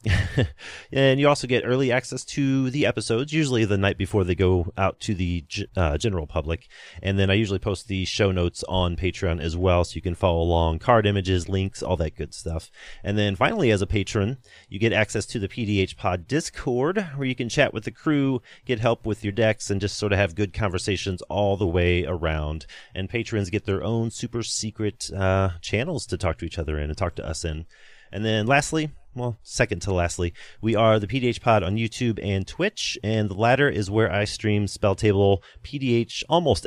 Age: 30-49